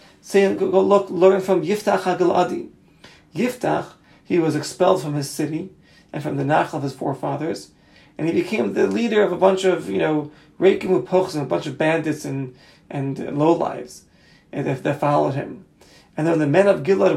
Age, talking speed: 40-59, 190 wpm